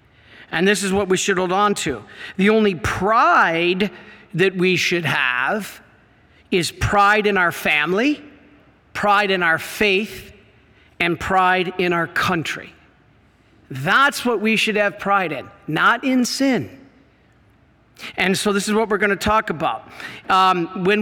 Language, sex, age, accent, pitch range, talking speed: English, male, 50-69, American, 175-220 Hz, 150 wpm